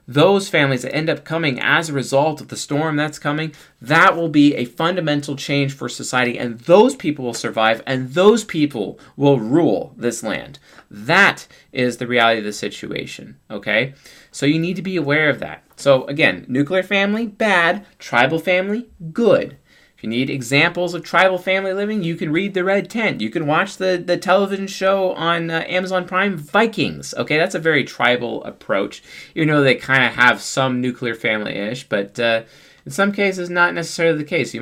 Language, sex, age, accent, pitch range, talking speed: English, male, 30-49, American, 135-180 Hz, 190 wpm